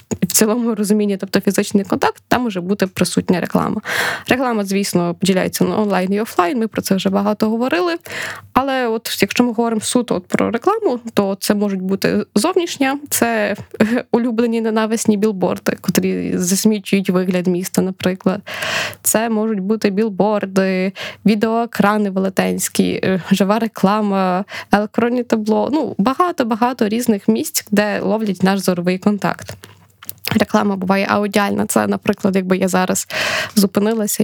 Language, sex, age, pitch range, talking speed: Ukrainian, female, 20-39, 195-230 Hz, 130 wpm